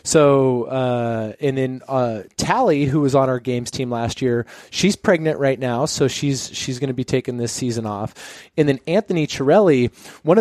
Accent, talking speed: American, 190 wpm